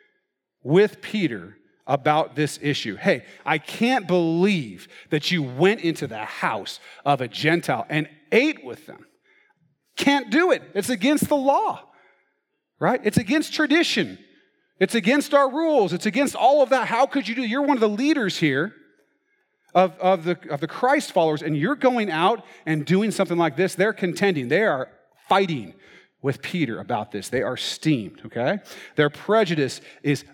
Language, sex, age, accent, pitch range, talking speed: English, male, 40-59, American, 150-230 Hz, 160 wpm